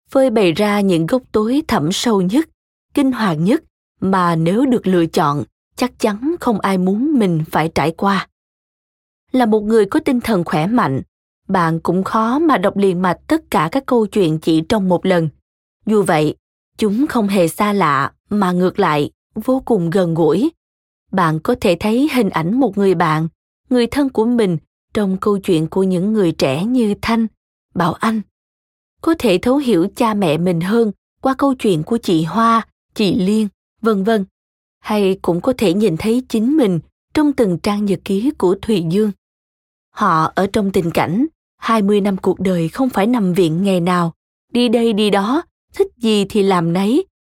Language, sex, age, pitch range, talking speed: Vietnamese, female, 20-39, 180-240 Hz, 185 wpm